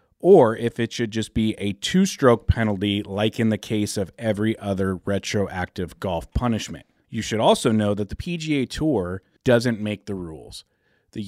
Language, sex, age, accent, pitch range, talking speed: English, male, 30-49, American, 95-120 Hz, 170 wpm